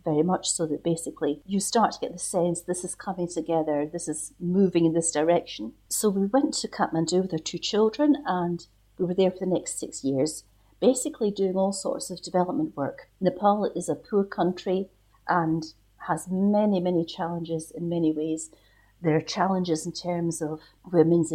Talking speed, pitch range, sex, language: 185 wpm, 160-185 Hz, female, English